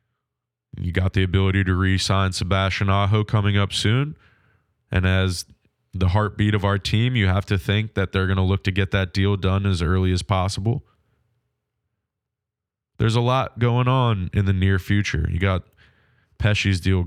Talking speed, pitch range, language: 170 wpm, 95-115 Hz, English